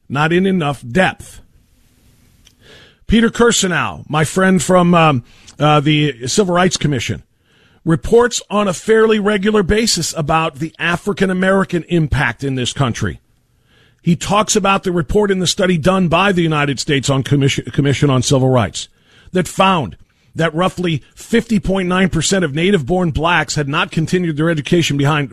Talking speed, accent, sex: 150 wpm, American, male